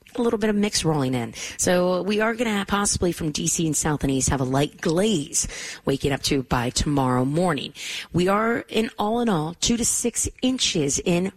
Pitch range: 150-215 Hz